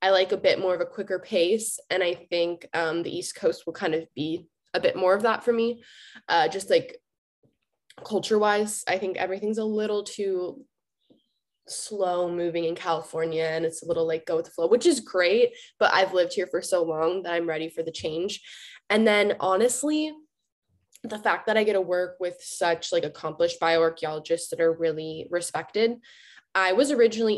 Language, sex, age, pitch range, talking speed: English, female, 20-39, 165-210 Hz, 195 wpm